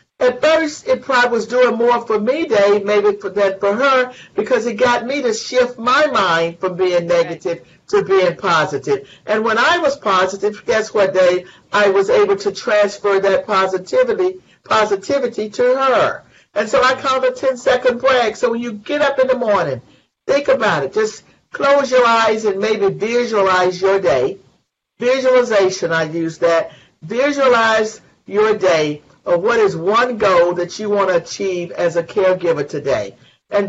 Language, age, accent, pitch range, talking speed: English, 50-69, American, 190-255 Hz, 175 wpm